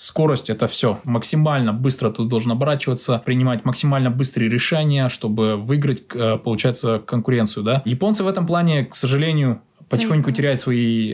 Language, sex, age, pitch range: Russian, male, 20-39, 120-160 Hz